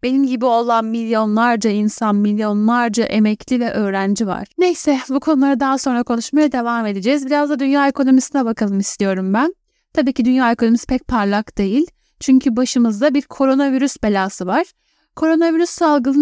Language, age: Turkish, 10-29